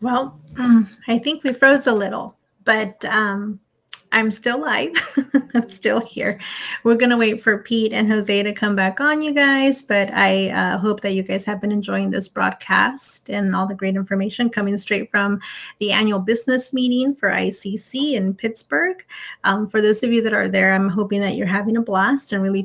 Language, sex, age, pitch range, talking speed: English, female, 30-49, 200-230 Hz, 195 wpm